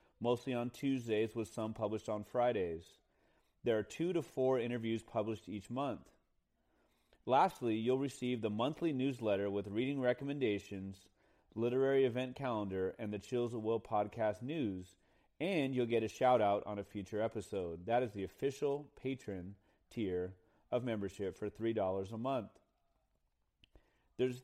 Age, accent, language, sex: 30-49, American, English, male